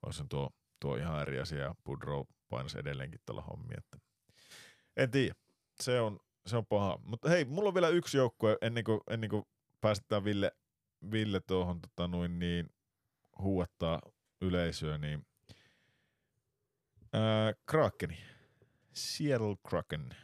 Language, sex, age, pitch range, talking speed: Finnish, male, 30-49, 80-110 Hz, 125 wpm